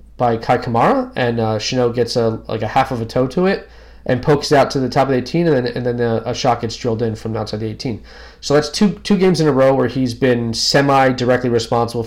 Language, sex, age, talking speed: English, male, 20-39, 275 wpm